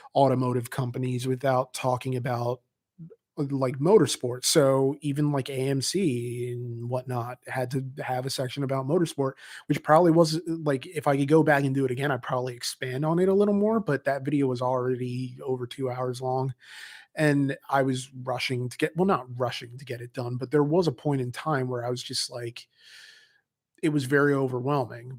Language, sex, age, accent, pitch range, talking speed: English, male, 30-49, American, 125-145 Hz, 190 wpm